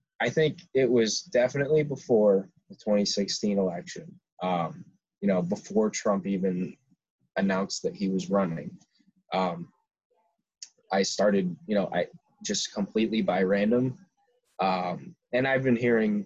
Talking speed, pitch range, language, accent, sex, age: 130 wpm, 95-150 Hz, English, American, male, 20-39